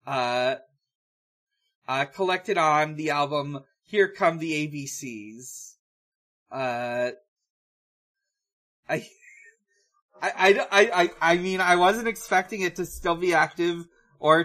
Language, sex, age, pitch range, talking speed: English, male, 30-49, 135-190 Hz, 110 wpm